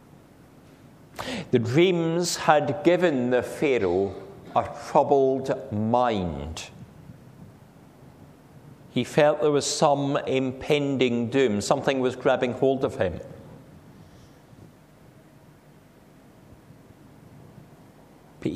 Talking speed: 75 wpm